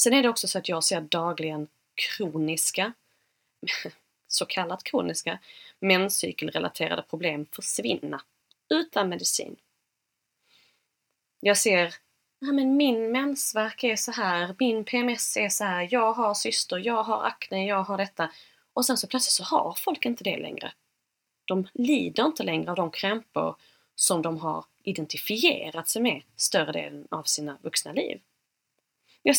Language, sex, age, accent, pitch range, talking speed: Swedish, female, 20-39, native, 165-240 Hz, 140 wpm